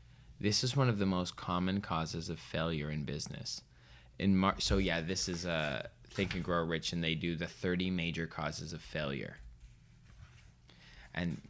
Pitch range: 75-95 Hz